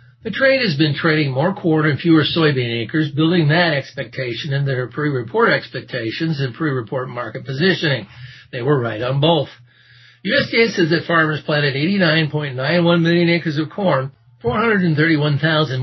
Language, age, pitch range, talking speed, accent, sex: English, 60-79, 125-160 Hz, 145 wpm, American, male